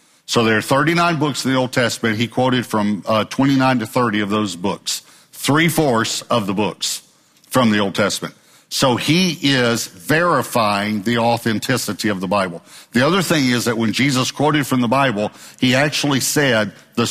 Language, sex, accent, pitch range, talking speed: English, male, American, 110-140 Hz, 180 wpm